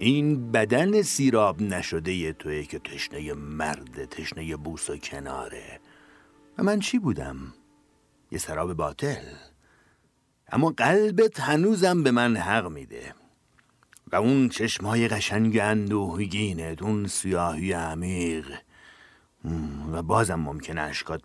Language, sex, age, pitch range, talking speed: Persian, male, 50-69, 80-115 Hz, 115 wpm